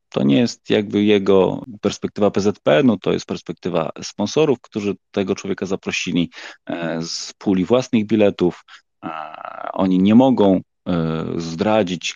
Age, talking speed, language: 30-49, 115 wpm, Polish